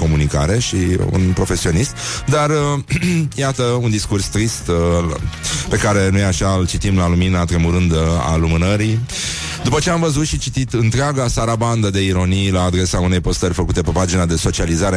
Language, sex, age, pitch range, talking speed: Romanian, male, 30-49, 85-115 Hz, 170 wpm